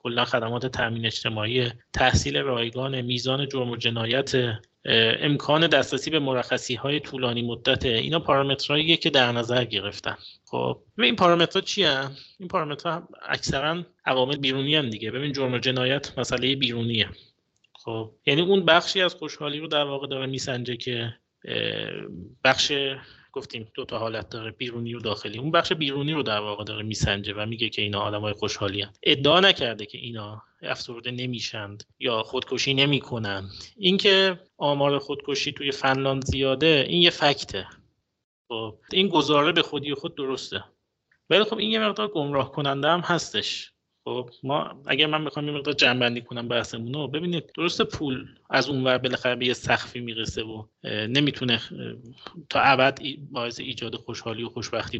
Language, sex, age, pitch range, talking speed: Persian, male, 30-49, 115-145 Hz, 150 wpm